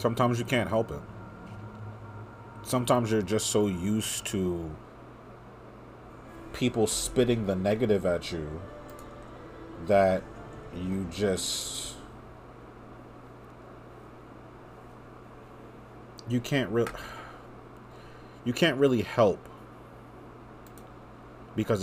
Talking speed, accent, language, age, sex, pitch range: 75 wpm, American, English, 30-49, male, 90-115 Hz